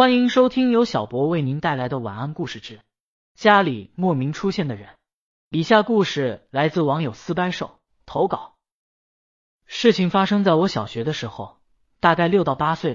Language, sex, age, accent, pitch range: Chinese, male, 30-49, native, 130-190 Hz